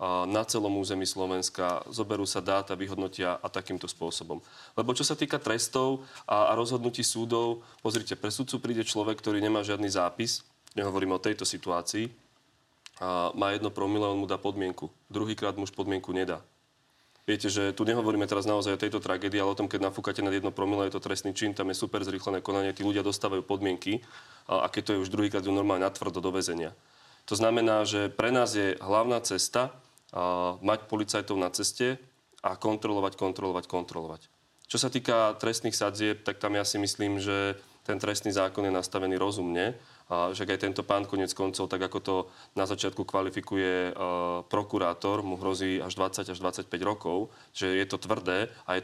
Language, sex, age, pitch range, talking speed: Slovak, male, 30-49, 95-105 Hz, 180 wpm